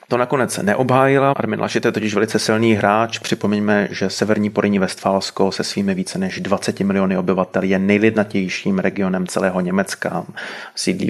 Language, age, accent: Czech, 30-49, native